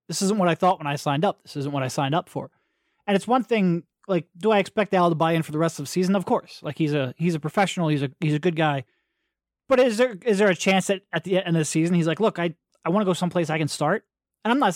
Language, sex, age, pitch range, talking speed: English, male, 20-39, 160-205 Hz, 315 wpm